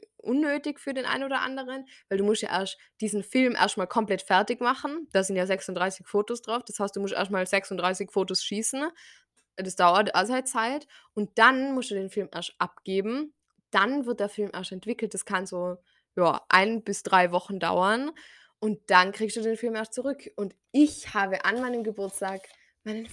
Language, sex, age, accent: German, female, 20-39, German